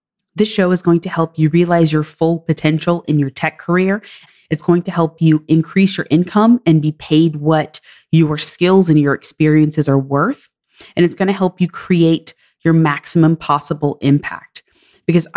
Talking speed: 180 wpm